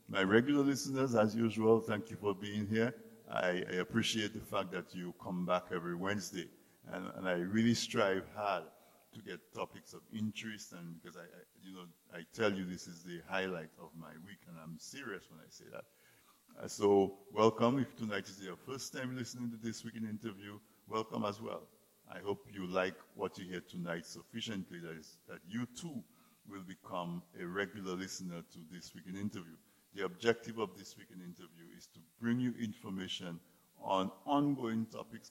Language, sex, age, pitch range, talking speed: English, male, 60-79, 90-110 Hz, 190 wpm